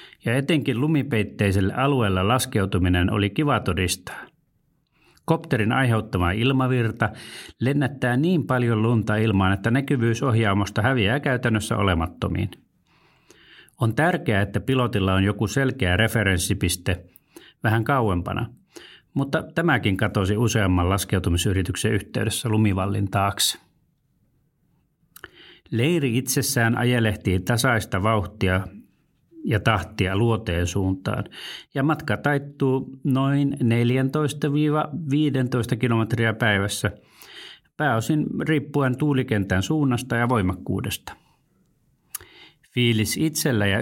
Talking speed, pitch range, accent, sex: 90 wpm, 100-135 Hz, native, male